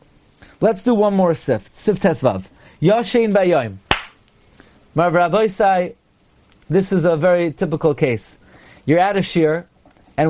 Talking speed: 130 wpm